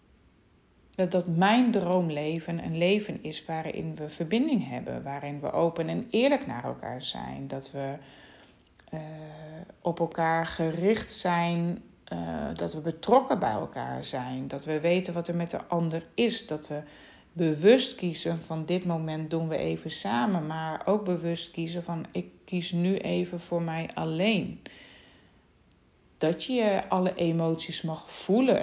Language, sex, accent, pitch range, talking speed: German, female, Dutch, 155-185 Hz, 145 wpm